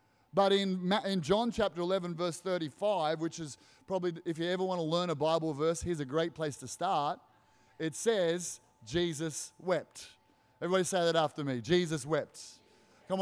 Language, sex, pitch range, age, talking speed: English, male, 150-230 Hz, 30-49, 175 wpm